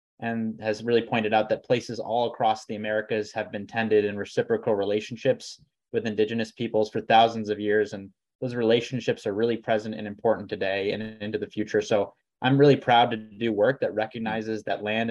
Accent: American